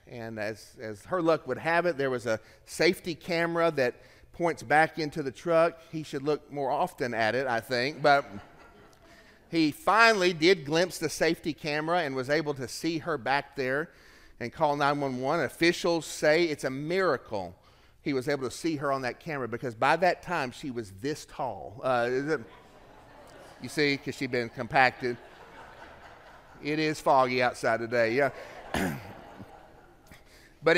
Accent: American